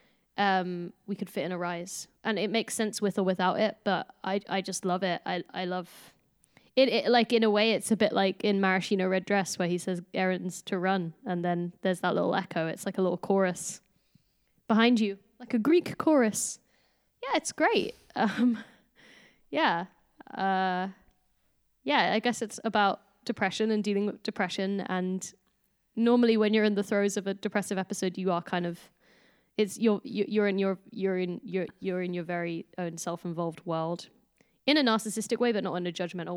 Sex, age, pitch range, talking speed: female, 10-29, 180-215 Hz, 195 wpm